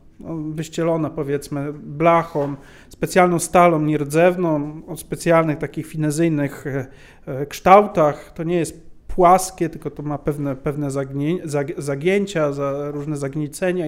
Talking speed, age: 105 wpm, 40-59